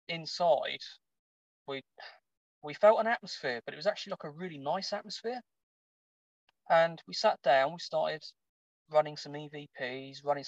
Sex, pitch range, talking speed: male, 135-165 Hz, 145 wpm